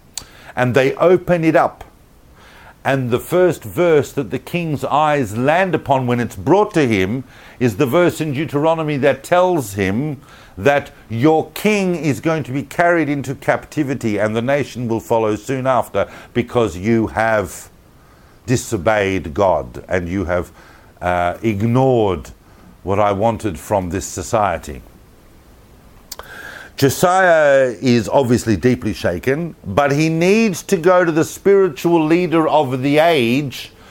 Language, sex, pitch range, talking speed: English, male, 110-165 Hz, 140 wpm